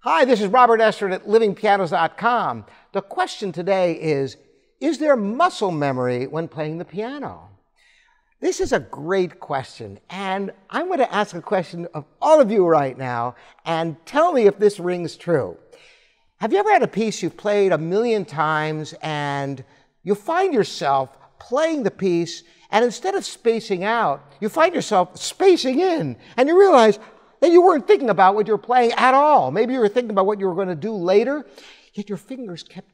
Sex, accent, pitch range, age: male, American, 160-235 Hz, 60-79